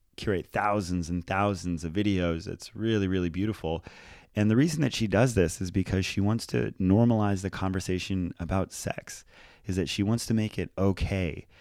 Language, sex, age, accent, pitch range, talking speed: English, male, 30-49, American, 85-105 Hz, 180 wpm